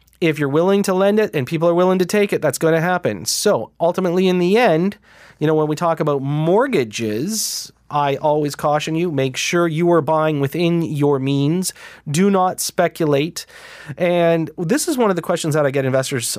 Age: 30-49